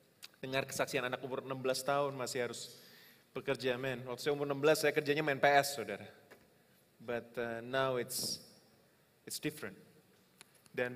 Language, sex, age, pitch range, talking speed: Indonesian, male, 20-39, 135-150 Hz, 140 wpm